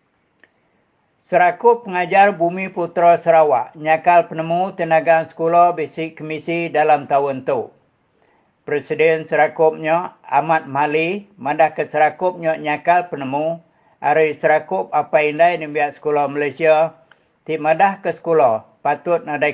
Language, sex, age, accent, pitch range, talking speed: English, male, 50-69, Indonesian, 150-170 Hz, 105 wpm